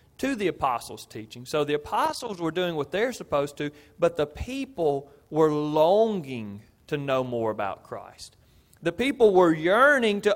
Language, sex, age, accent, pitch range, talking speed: English, male, 40-59, American, 140-210 Hz, 160 wpm